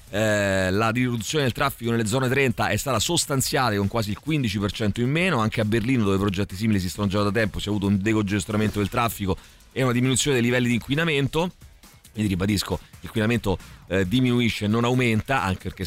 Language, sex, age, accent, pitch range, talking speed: Italian, male, 30-49, native, 100-135 Hz, 195 wpm